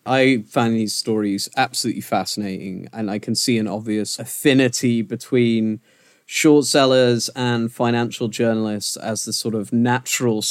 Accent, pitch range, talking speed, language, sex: British, 110-130 Hz, 135 wpm, English, male